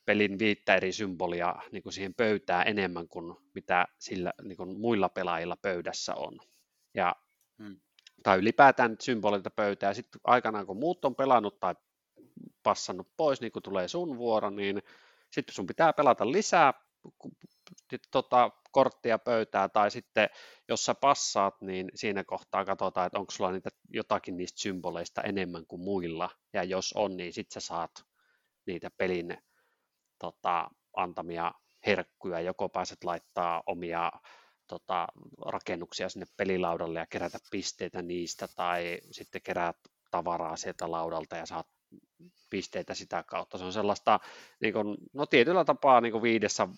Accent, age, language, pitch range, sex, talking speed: native, 30-49, Finnish, 90-110 Hz, male, 150 wpm